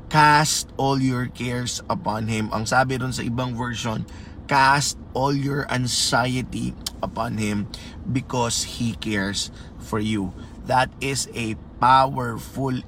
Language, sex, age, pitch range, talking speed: Filipino, male, 20-39, 105-135 Hz, 125 wpm